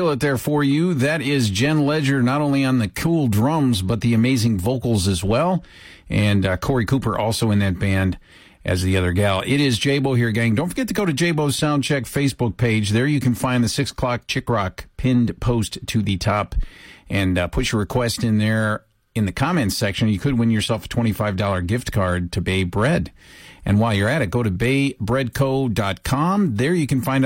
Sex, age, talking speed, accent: male, 50-69, 210 wpm, American